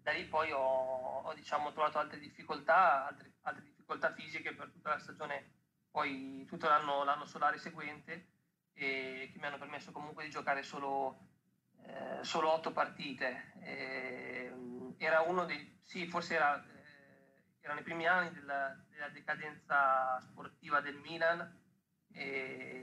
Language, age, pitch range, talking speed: Italian, 30-49, 135-150 Hz, 145 wpm